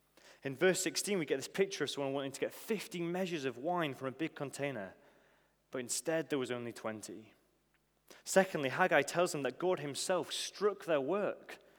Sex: male